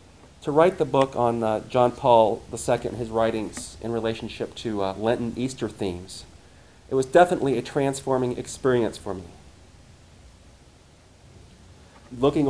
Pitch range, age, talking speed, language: 95-130 Hz, 40-59, 135 wpm, English